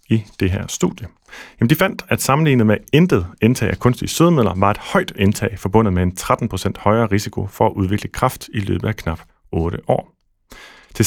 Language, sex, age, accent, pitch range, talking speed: Danish, male, 30-49, native, 90-110 Hz, 195 wpm